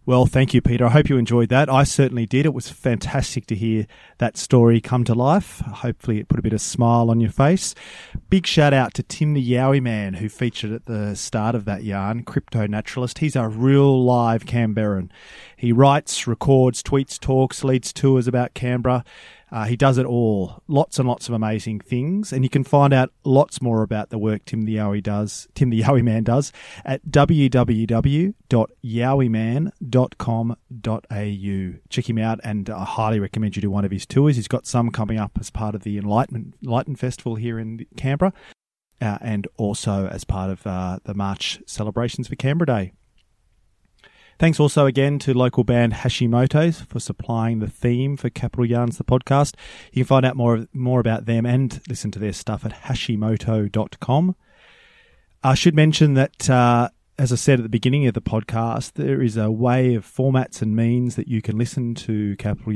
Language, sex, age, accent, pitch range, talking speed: English, male, 30-49, Australian, 110-135 Hz, 185 wpm